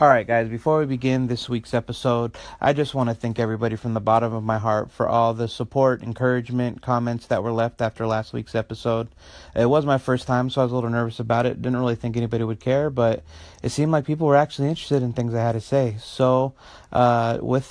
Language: English